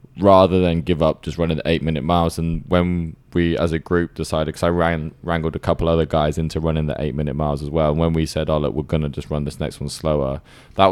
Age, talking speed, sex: 20-39, 245 wpm, male